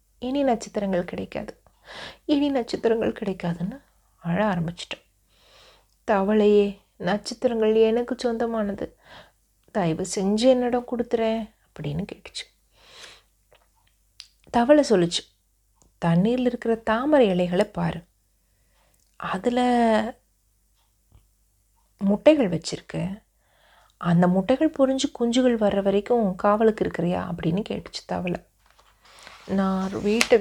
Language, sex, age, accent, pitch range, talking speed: Tamil, female, 30-49, native, 180-230 Hz, 80 wpm